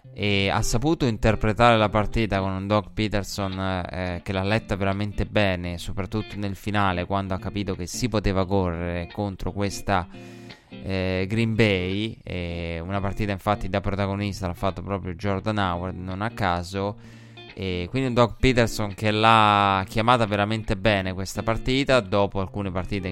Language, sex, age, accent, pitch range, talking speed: Italian, male, 20-39, native, 95-110 Hz, 150 wpm